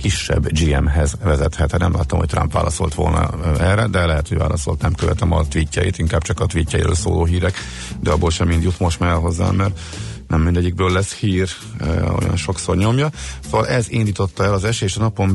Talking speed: 185 wpm